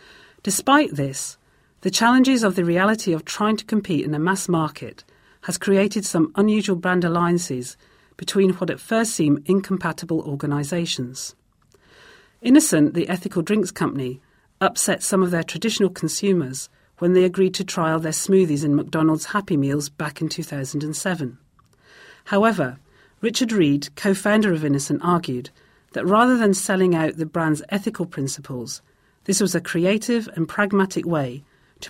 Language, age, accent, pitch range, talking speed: English, 40-59, British, 150-195 Hz, 145 wpm